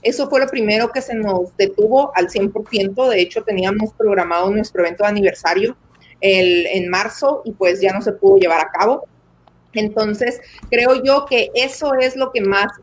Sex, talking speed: female, 180 wpm